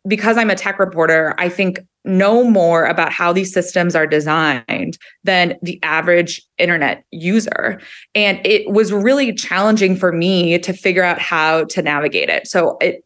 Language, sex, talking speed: English, female, 165 wpm